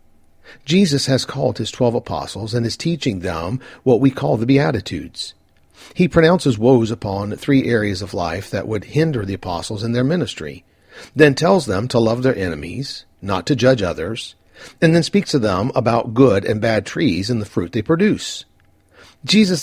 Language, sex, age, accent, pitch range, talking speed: English, male, 50-69, American, 100-145 Hz, 175 wpm